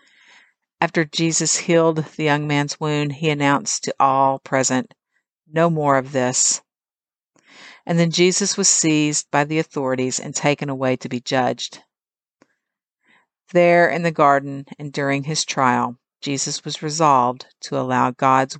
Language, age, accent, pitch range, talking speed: English, 50-69, American, 135-170 Hz, 140 wpm